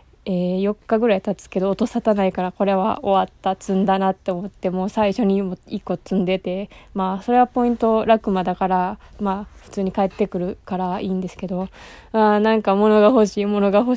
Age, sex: 20-39, female